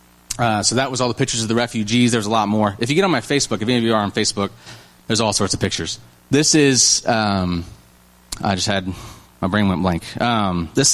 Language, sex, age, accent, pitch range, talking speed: English, male, 30-49, American, 105-130 Hz, 240 wpm